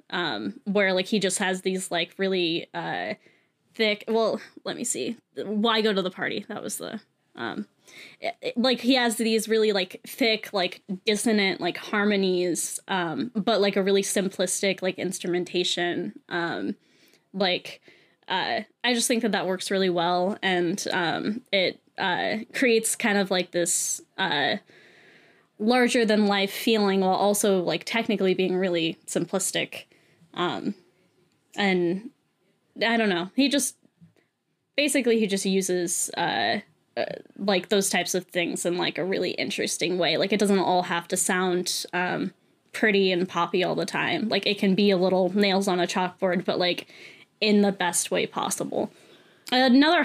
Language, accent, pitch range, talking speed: English, American, 180-220 Hz, 155 wpm